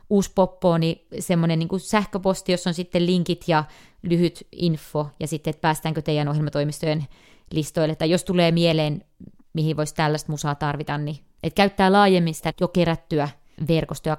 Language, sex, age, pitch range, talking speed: Finnish, female, 30-49, 155-175 Hz, 160 wpm